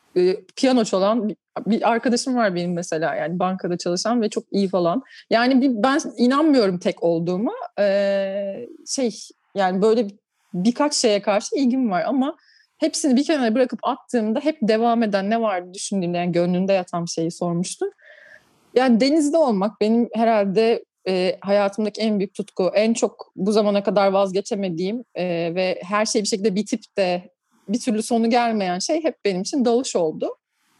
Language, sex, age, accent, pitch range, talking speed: Turkish, female, 30-49, native, 190-245 Hz, 150 wpm